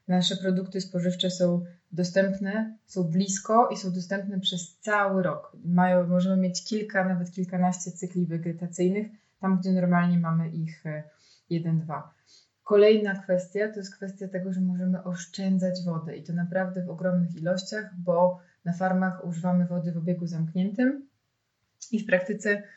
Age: 20-39